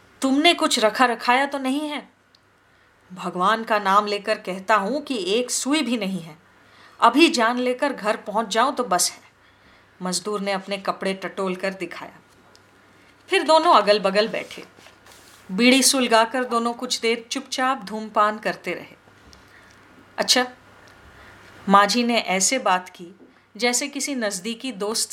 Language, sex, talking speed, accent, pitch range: Hindi, female, 140 wpm, native, 200-270 Hz